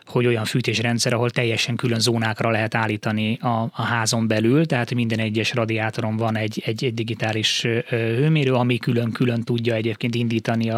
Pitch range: 115-130 Hz